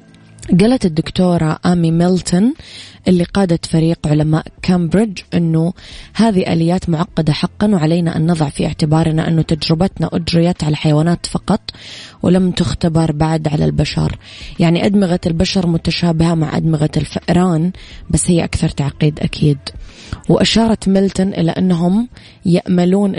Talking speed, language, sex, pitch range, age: 120 wpm, Arabic, female, 155-180 Hz, 20-39